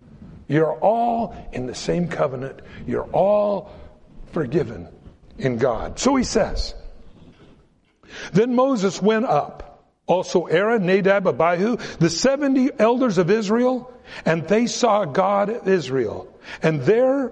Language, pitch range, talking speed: English, 145-215 Hz, 120 wpm